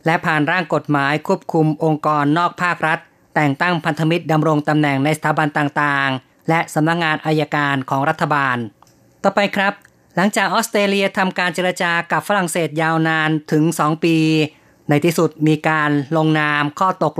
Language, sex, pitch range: Thai, female, 150-170 Hz